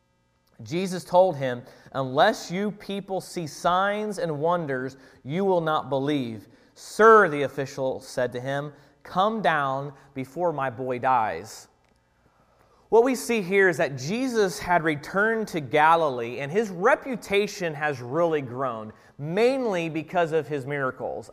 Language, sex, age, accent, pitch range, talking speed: English, male, 30-49, American, 140-205 Hz, 135 wpm